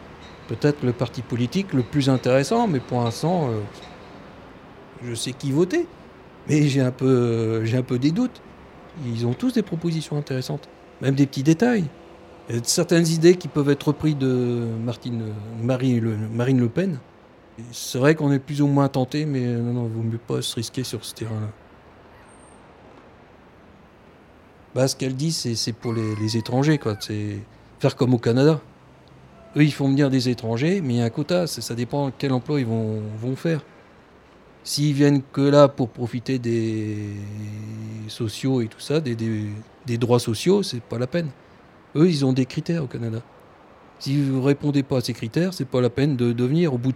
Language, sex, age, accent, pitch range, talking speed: French, male, 50-69, French, 115-150 Hz, 190 wpm